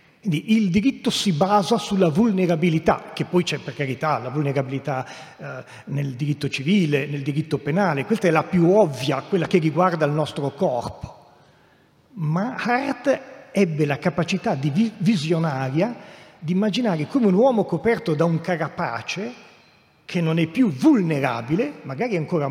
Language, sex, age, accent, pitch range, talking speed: Italian, male, 40-59, native, 150-195 Hz, 140 wpm